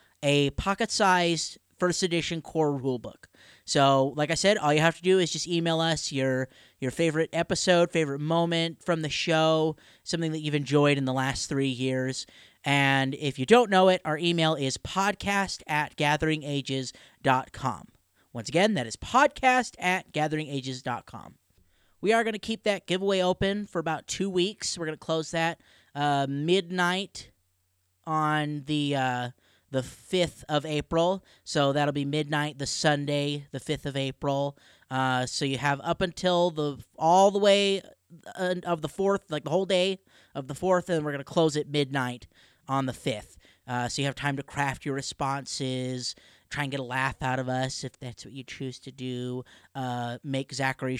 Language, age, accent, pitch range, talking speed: English, 30-49, American, 135-175 Hz, 175 wpm